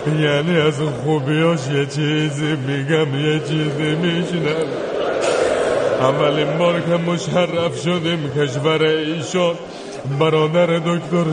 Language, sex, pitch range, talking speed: Persian, male, 155-195 Hz, 95 wpm